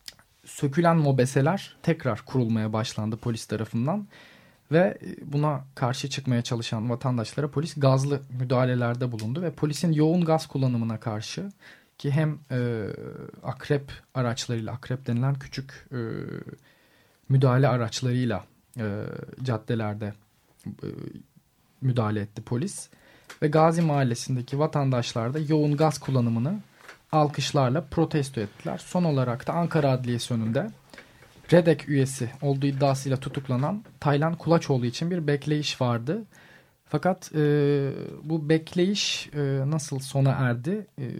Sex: male